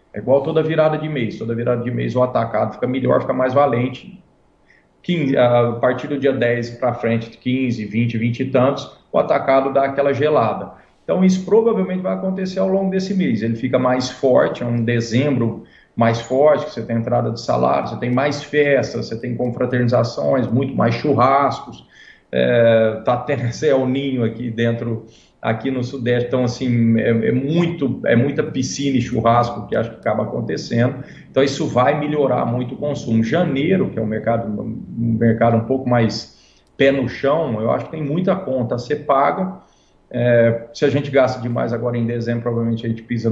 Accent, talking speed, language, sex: Brazilian, 190 wpm, Portuguese, male